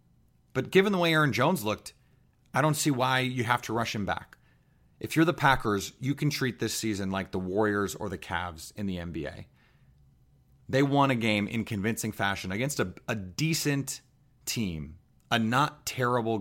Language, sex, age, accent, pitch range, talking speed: English, male, 30-49, American, 105-130 Hz, 185 wpm